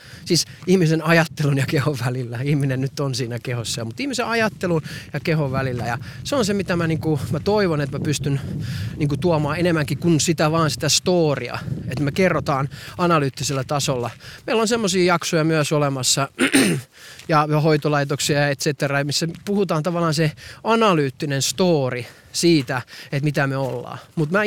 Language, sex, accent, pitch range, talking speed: Finnish, male, native, 135-165 Hz, 160 wpm